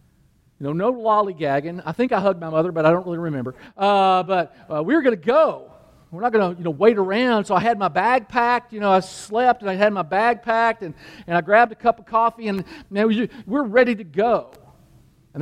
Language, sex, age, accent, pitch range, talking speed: English, male, 50-69, American, 175-240 Hz, 245 wpm